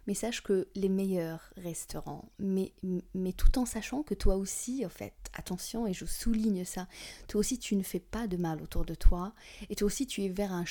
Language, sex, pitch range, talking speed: French, female, 170-200 Hz, 220 wpm